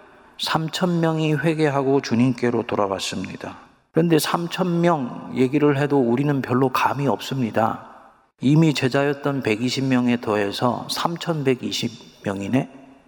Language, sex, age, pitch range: Korean, male, 40-59, 110-140 Hz